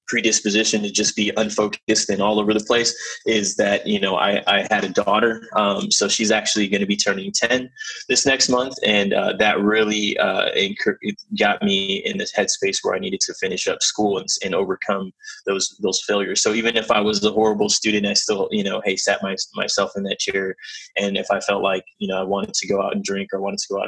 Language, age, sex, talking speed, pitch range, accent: English, 20-39, male, 235 wpm, 100-150 Hz, American